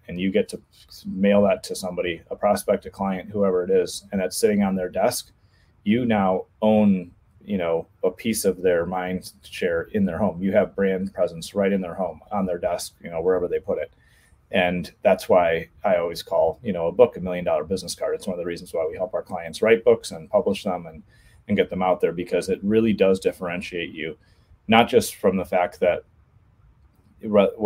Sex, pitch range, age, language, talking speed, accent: male, 90-115 Hz, 30-49, English, 220 wpm, American